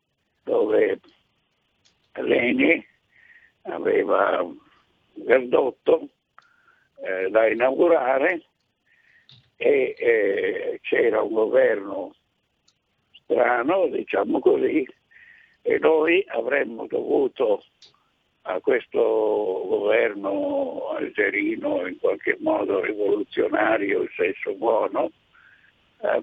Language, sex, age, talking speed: Italian, male, 60-79, 75 wpm